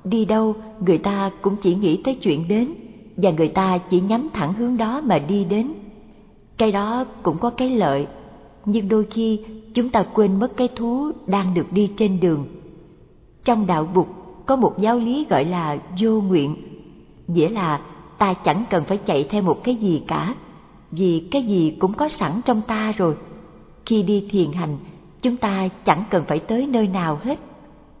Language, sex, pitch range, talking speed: Vietnamese, female, 175-225 Hz, 185 wpm